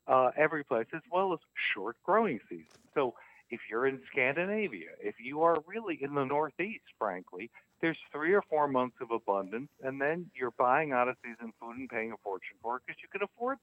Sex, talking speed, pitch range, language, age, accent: male, 195 wpm, 115-155 Hz, English, 60-79, American